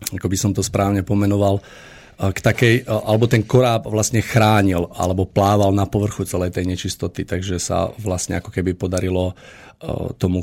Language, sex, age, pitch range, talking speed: Slovak, male, 50-69, 90-110 Hz, 155 wpm